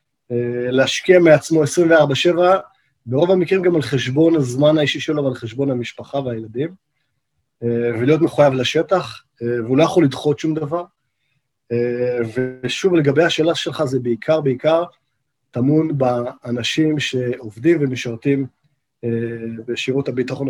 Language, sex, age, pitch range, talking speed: Hebrew, male, 30-49, 125-160 Hz, 110 wpm